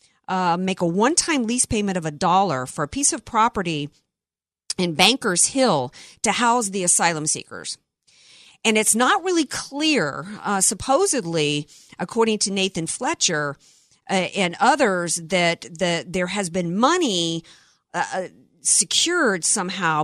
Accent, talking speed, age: American, 135 wpm, 50-69